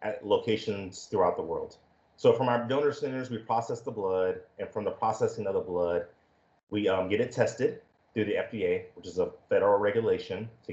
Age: 30-49